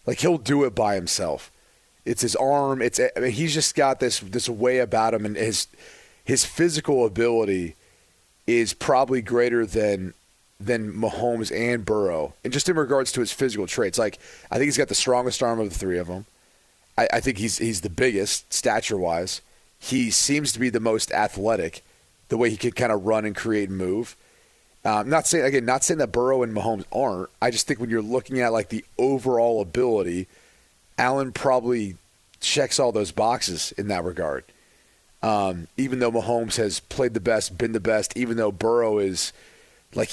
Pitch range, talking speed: 105-130 Hz, 190 wpm